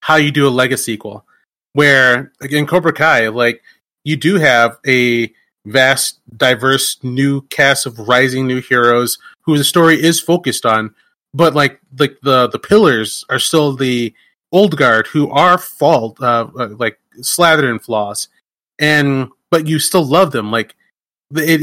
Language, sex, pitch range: English, male, 120-150 Hz